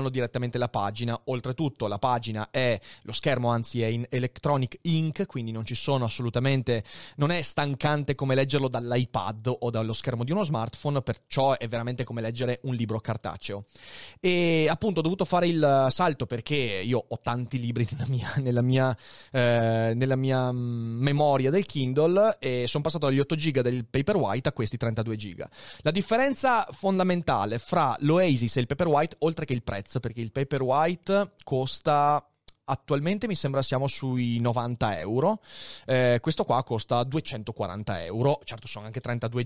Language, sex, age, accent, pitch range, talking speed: Italian, male, 30-49, native, 120-155 Hz, 160 wpm